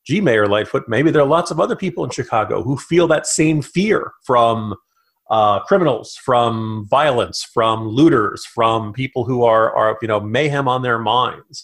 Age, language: 40-59, English